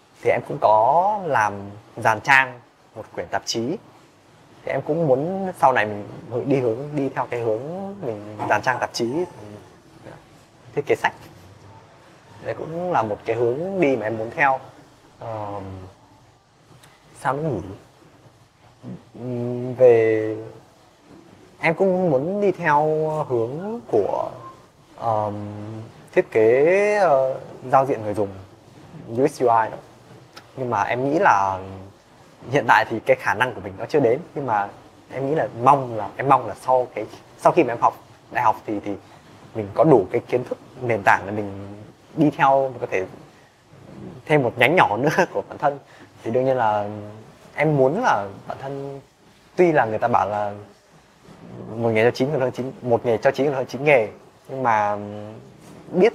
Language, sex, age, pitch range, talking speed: Vietnamese, male, 20-39, 110-150 Hz, 165 wpm